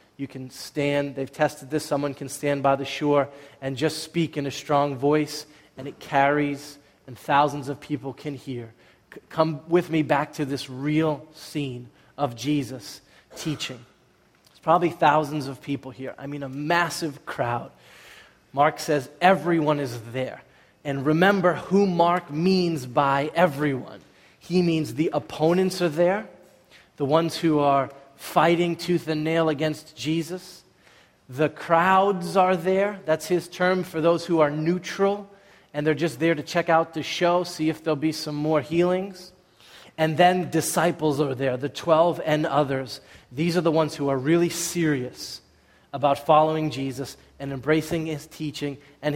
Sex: male